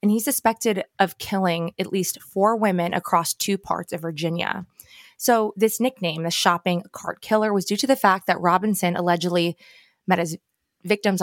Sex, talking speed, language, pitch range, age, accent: female, 170 wpm, English, 175-215 Hz, 20-39, American